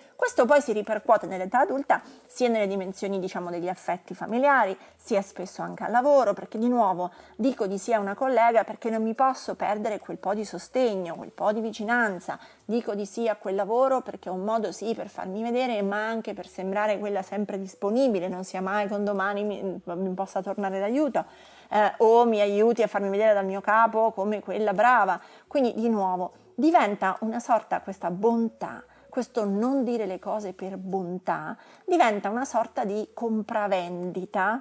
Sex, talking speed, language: female, 180 wpm, Italian